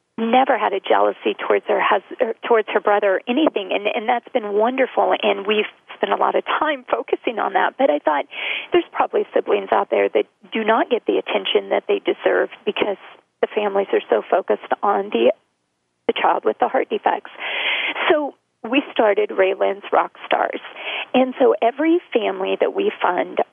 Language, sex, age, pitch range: English, female, 40-59, 200-270 Hz